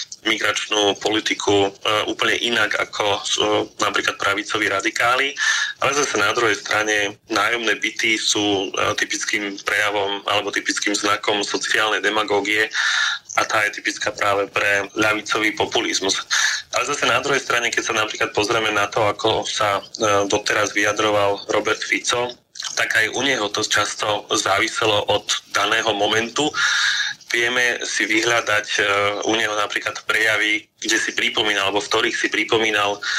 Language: Slovak